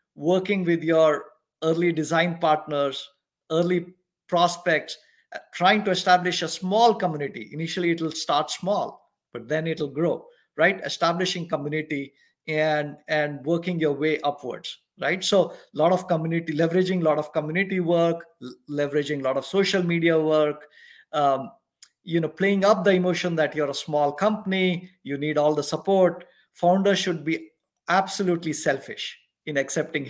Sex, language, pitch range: male, English, 150-180 Hz